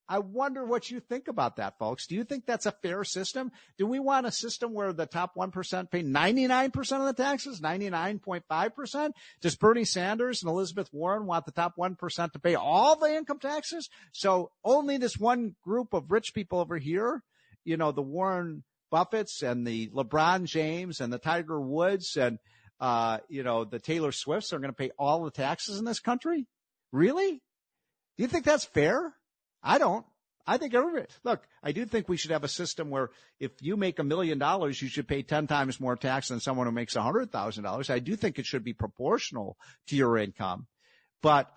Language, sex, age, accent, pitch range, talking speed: English, male, 50-69, American, 135-215 Hz, 195 wpm